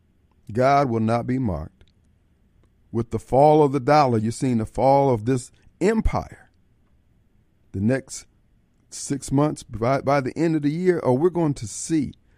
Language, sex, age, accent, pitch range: Japanese, male, 50-69, American, 115-155 Hz